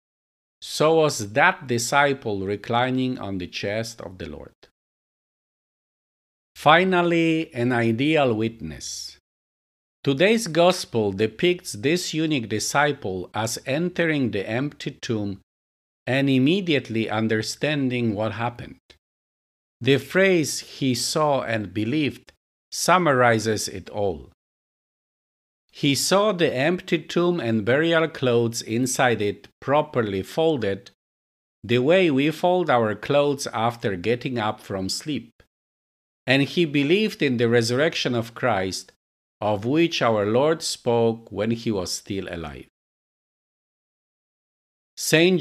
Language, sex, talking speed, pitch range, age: English, male, 110 wpm, 100-145 Hz, 50-69